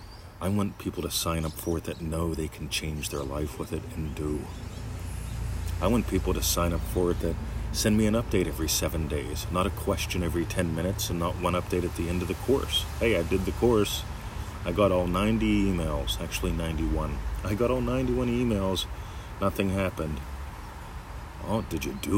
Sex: male